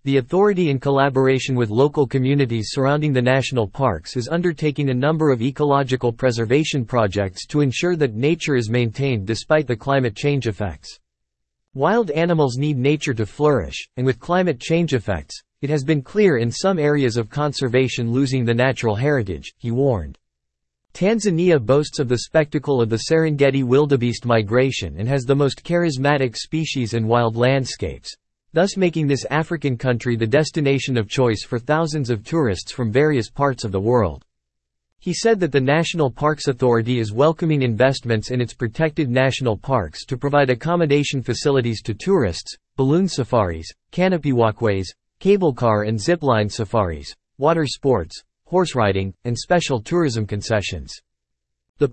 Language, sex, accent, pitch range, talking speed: English, male, American, 115-150 Hz, 155 wpm